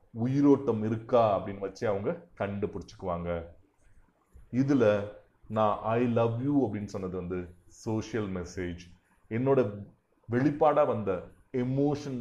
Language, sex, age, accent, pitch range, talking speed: Tamil, male, 30-49, native, 95-125 Hz, 90 wpm